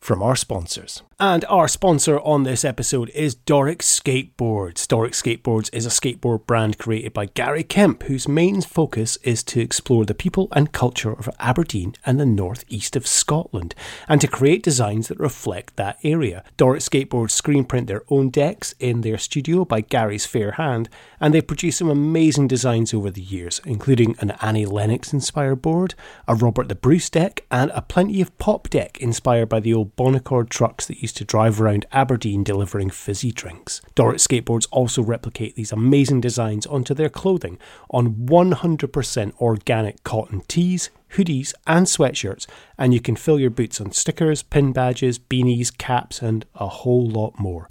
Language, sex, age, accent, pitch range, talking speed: English, male, 30-49, British, 110-145 Hz, 170 wpm